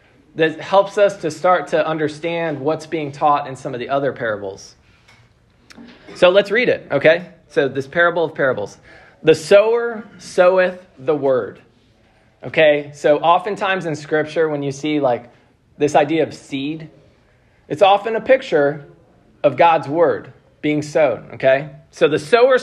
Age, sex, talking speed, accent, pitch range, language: 20-39, male, 150 wpm, American, 135-170 Hz, English